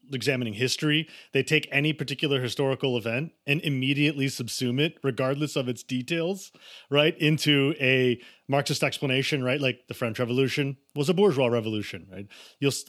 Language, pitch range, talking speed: English, 120-150 Hz, 150 wpm